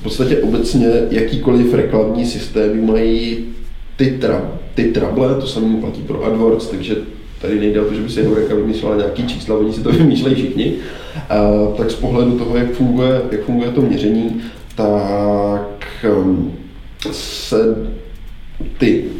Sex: male